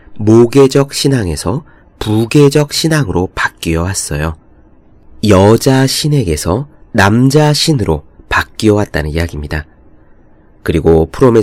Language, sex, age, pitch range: Korean, male, 30-49, 85-135 Hz